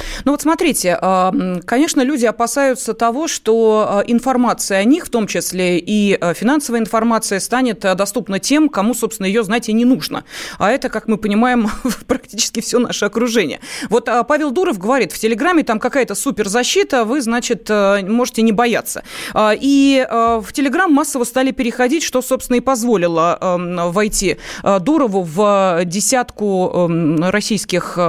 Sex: female